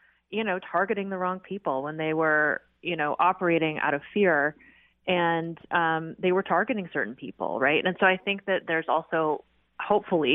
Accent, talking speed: American, 180 wpm